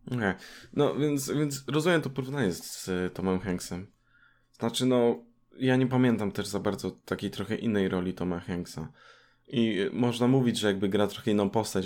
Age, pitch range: 20-39, 95-120 Hz